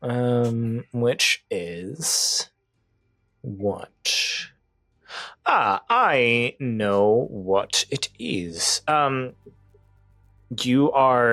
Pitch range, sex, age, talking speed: 95-110 Hz, male, 30-49, 70 wpm